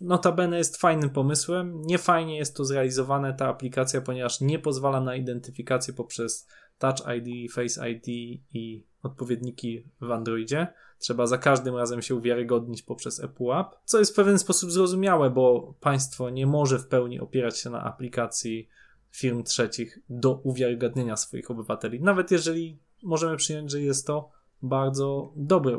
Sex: male